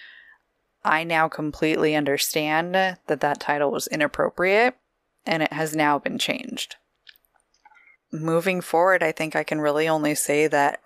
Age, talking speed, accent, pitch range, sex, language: 20-39, 140 wpm, American, 150-180 Hz, female, English